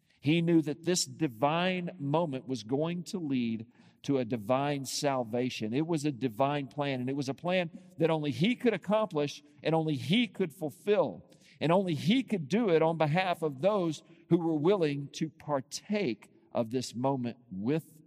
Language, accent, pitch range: English, American, 125-165 Hz